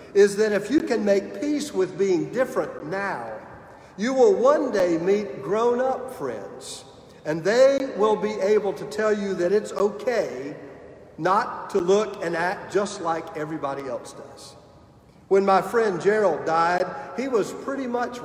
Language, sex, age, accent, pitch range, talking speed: English, male, 50-69, American, 170-225 Hz, 160 wpm